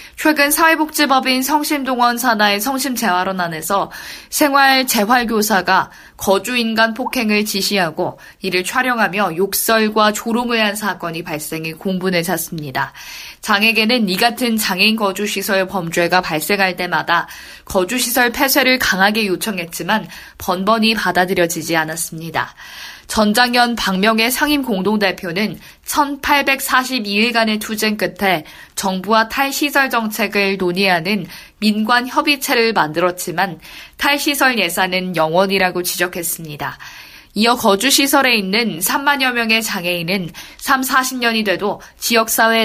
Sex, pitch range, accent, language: female, 185-245 Hz, native, Korean